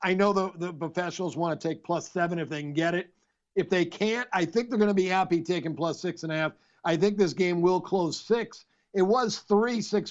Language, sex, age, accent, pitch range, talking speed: English, male, 50-69, American, 170-195 Hz, 250 wpm